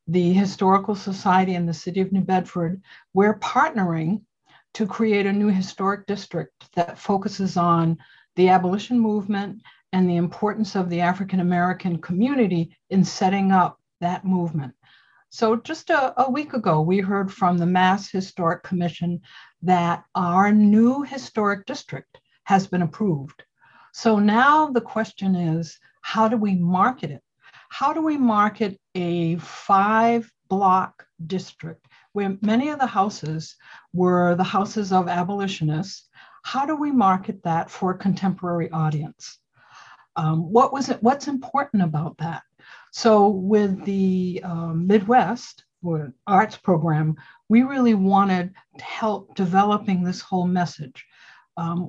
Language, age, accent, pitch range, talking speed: English, 60-79, American, 175-210 Hz, 135 wpm